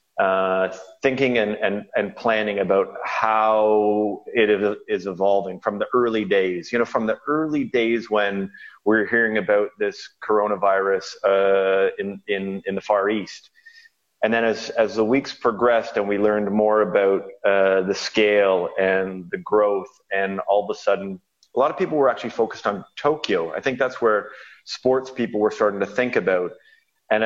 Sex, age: male, 30-49